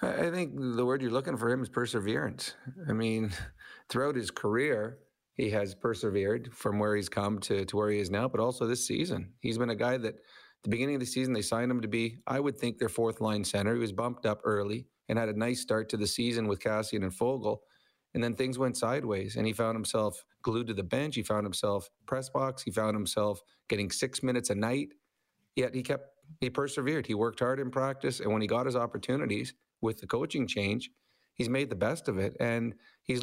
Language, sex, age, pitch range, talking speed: English, male, 40-59, 105-125 Hz, 230 wpm